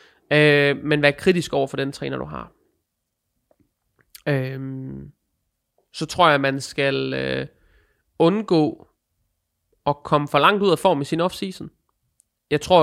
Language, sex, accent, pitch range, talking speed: Danish, male, native, 140-165 Hz, 145 wpm